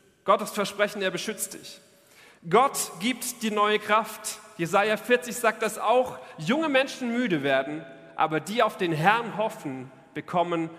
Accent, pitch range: German, 160-215 Hz